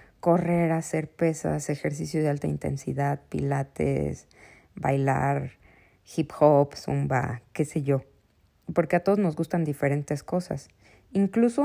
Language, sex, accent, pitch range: Spanish, female, Mexican, 140-180 Hz